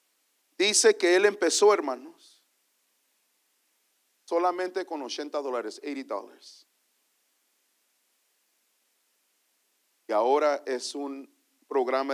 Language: English